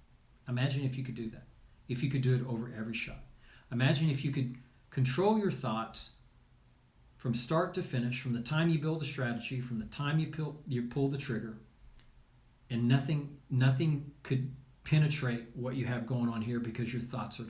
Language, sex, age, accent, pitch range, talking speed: English, male, 40-59, American, 120-140 Hz, 190 wpm